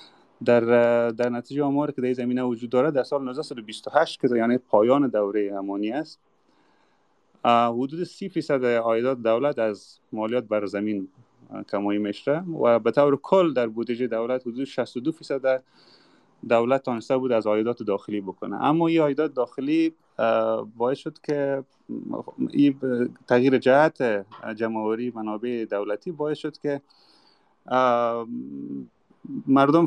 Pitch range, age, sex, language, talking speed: 110-140 Hz, 30-49, male, Persian, 130 wpm